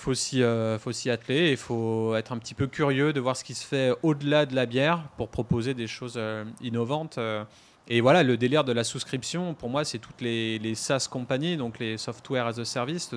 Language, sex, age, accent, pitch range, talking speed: French, male, 30-49, French, 115-135 Hz, 235 wpm